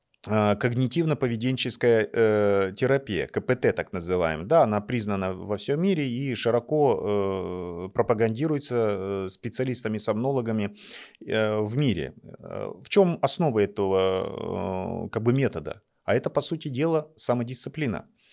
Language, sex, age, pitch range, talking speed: Russian, male, 30-49, 105-130 Hz, 90 wpm